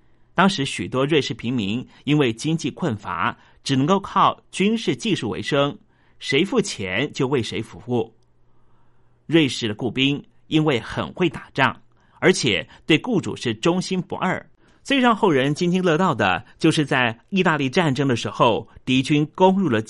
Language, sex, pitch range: Chinese, male, 120-180 Hz